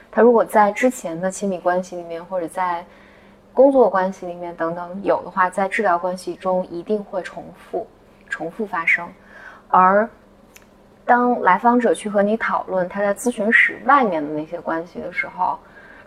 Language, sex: Chinese, female